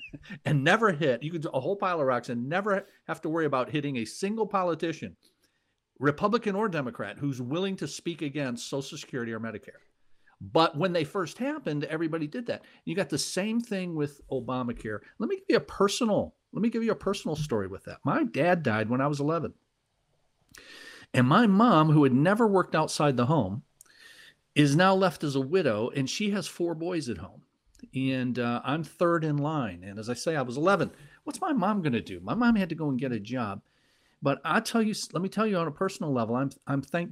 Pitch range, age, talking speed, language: 130-185 Hz, 50-69, 220 wpm, English